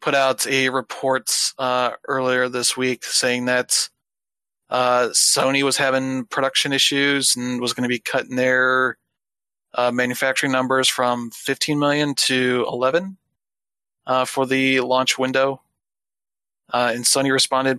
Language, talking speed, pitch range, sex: English, 135 wpm, 125-135 Hz, male